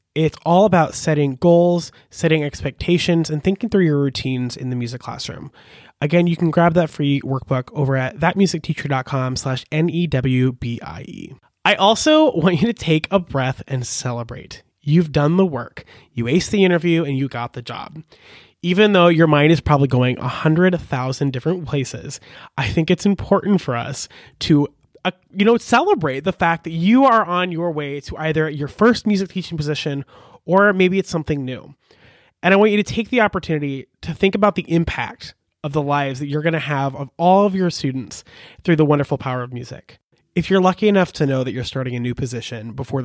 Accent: American